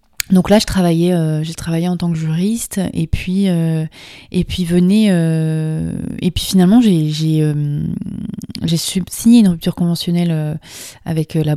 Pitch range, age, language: 155-180 Hz, 20-39, French